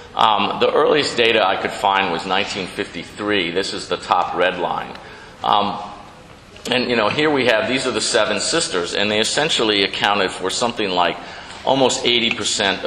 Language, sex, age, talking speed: Italian, male, 50-69, 170 wpm